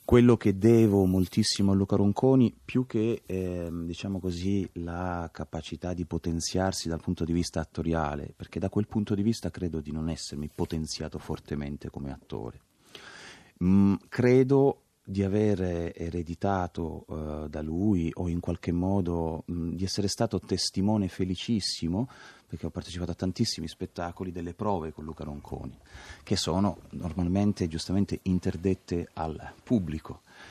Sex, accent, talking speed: male, native, 140 wpm